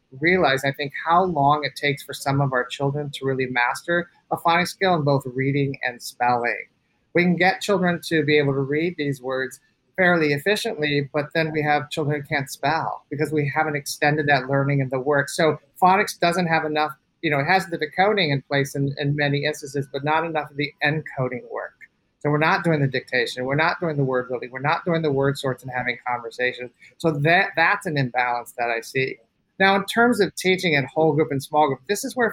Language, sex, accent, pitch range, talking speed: English, male, American, 135-170 Hz, 225 wpm